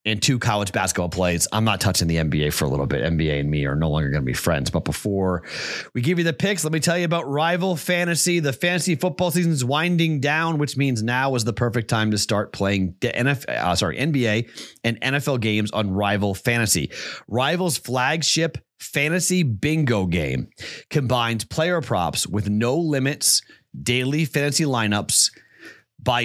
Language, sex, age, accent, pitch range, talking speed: English, male, 30-49, American, 105-140 Hz, 185 wpm